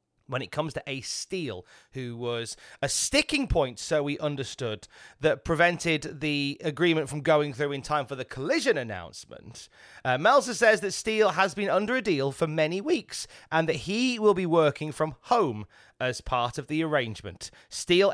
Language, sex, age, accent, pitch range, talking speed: English, male, 30-49, British, 125-160 Hz, 180 wpm